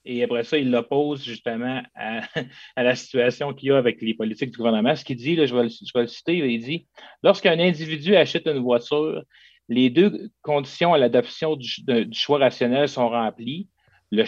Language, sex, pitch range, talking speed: French, male, 120-145 Hz, 205 wpm